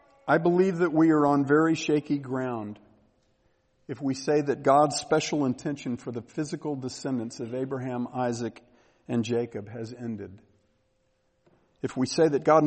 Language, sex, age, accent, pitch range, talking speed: English, male, 50-69, American, 115-150 Hz, 150 wpm